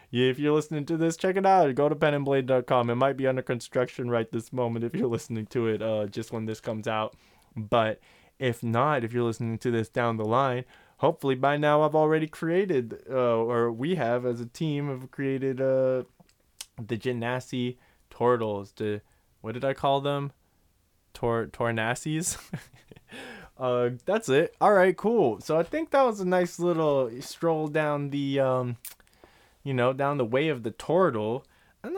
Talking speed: 180 wpm